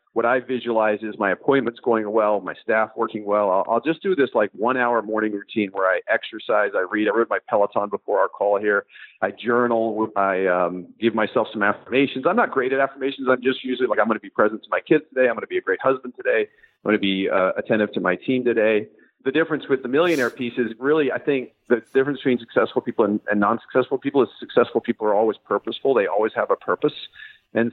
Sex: male